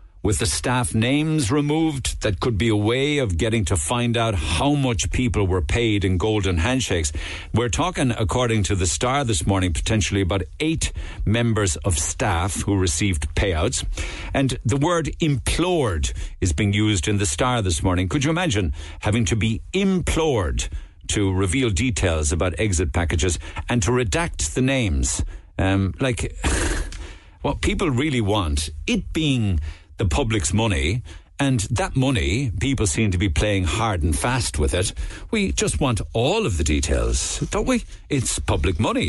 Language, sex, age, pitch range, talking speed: English, male, 60-79, 85-120 Hz, 165 wpm